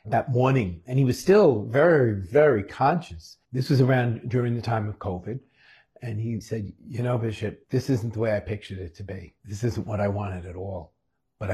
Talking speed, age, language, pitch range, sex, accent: 210 wpm, 50-69, English, 95-125 Hz, male, American